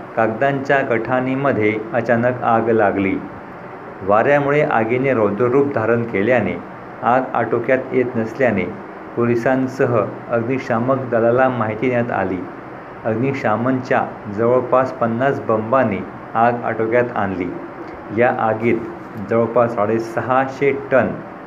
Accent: native